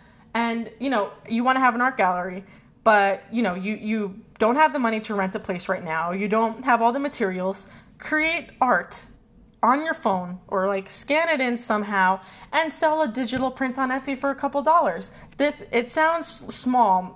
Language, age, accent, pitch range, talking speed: English, 20-39, American, 200-255 Hz, 200 wpm